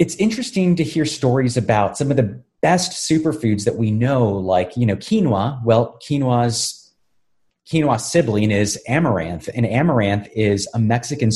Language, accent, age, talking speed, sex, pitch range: English, American, 30-49, 155 wpm, male, 110-150 Hz